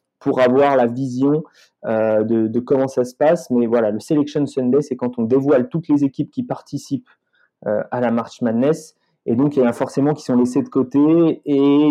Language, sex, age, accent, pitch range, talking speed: French, male, 20-39, French, 115-140 Hz, 215 wpm